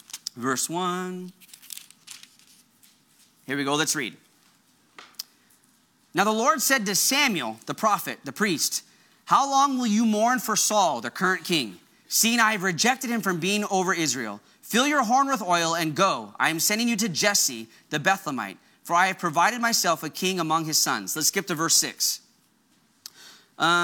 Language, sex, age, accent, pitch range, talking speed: English, male, 30-49, American, 165-230 Hz, 165 wpm